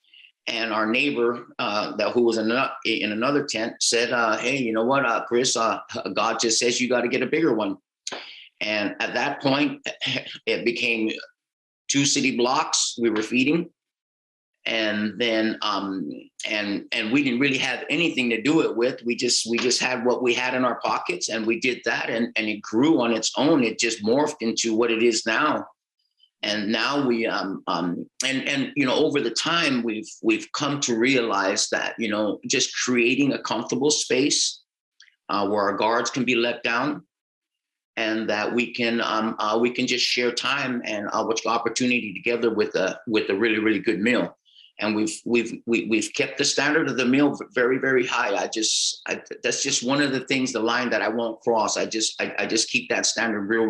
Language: English